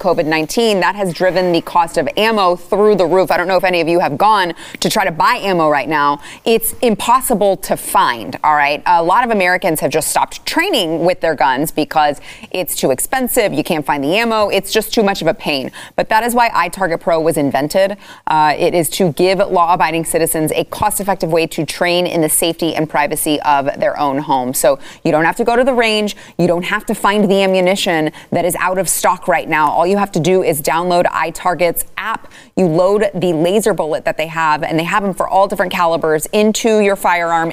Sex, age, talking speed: female, 30-49, 225 wpm